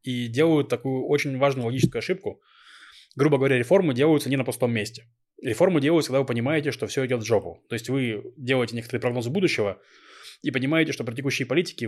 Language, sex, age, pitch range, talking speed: Russian, male, 20-39, 115-150 Hz, 190 wpm